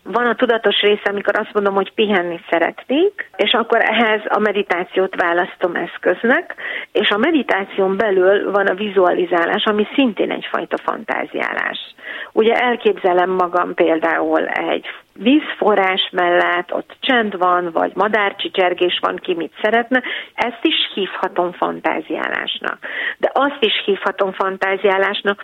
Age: 30-49